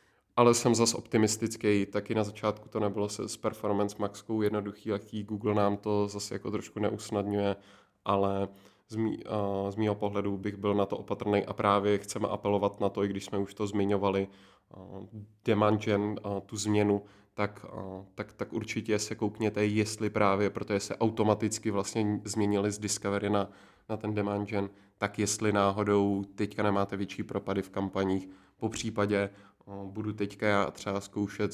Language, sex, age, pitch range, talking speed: Czech, male, 20-39, 100-105 Hz, 165 wpm